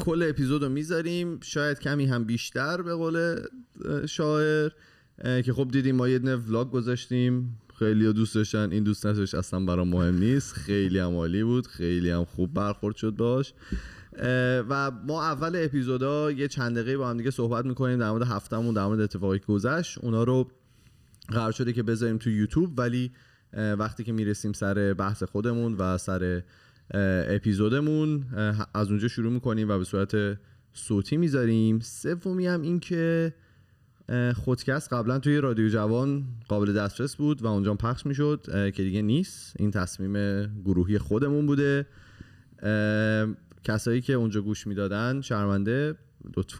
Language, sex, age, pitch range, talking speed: Persian, male, 30-49, 105-130 Hz, 145 wpm